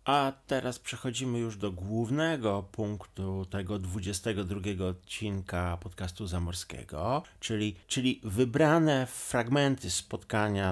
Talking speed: 95 wpm